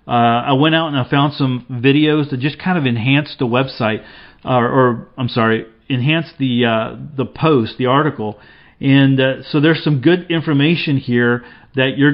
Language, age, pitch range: English, 40-59, 120-150 Hz